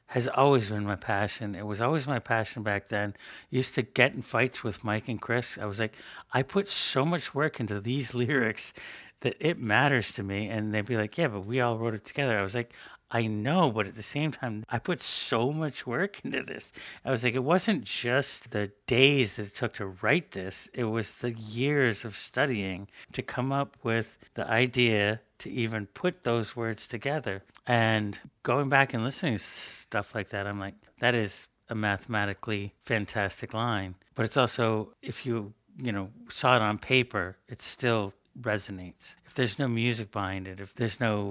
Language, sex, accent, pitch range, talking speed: English, male, American, 105-130 Hz, 200 wpm